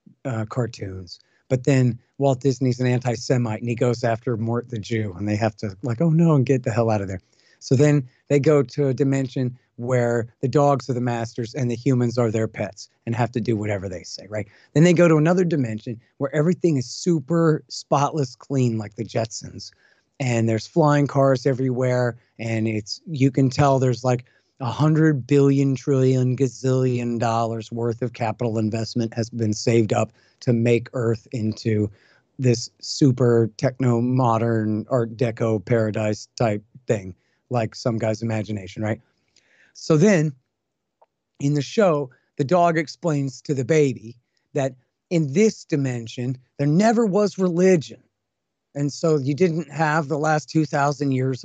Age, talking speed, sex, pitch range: 40-59, 170 wpm, male, 115-140 Hz